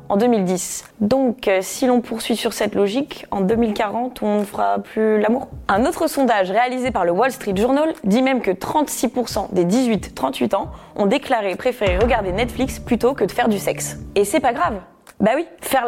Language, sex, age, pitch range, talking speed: French, female, 20-39, 205-260 Hz, 195 wpm